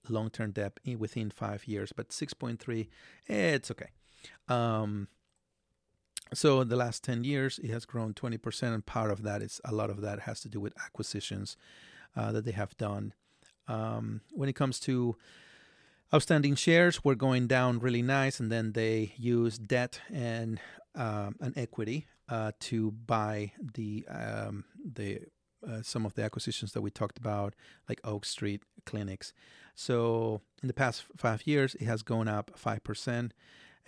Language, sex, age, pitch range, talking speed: English, male, 30-49, 110-125 Hz, 160 wpm